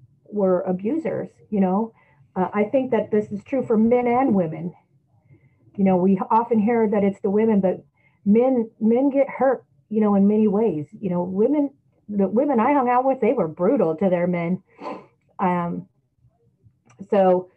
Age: 40-59